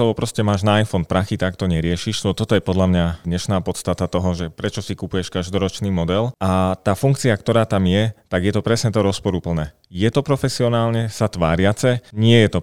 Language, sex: Slovak, male